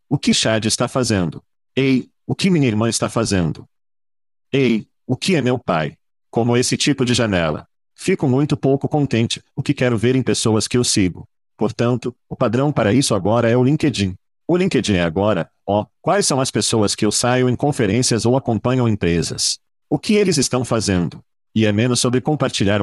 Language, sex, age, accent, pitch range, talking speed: Portuguese, male, 50-69, Brazilian, 105-130 Hz, 190 wpm